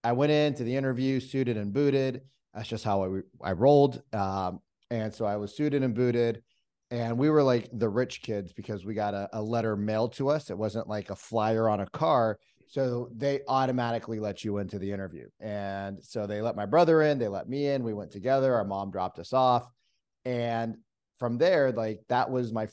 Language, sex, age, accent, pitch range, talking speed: English, male, 30-49, American, 105-130 Hz, 210 wpm